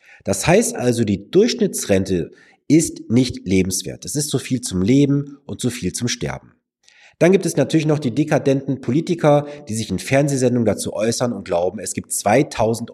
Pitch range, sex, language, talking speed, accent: 100-140 Hz, male, German, 175 wpm, German